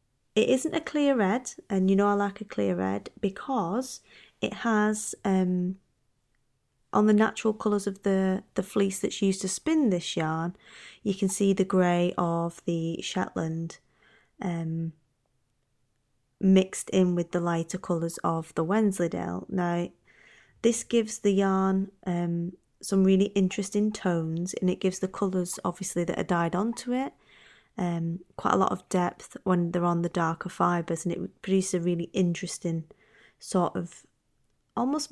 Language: English